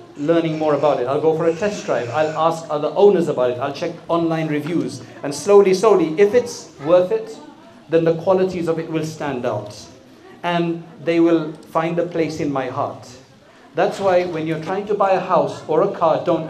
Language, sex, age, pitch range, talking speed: English, male, 40-59, 150-180 Hz, 205 wpm